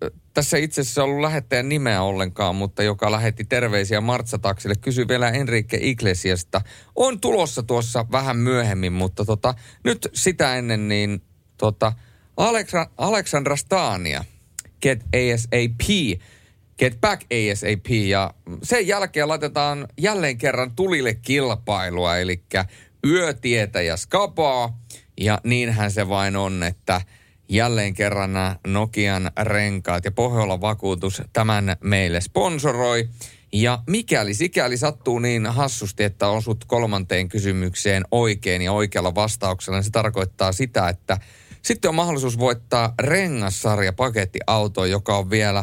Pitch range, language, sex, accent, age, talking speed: 100-125 Hz, Finnish, male, native, 30-49, 120 wpm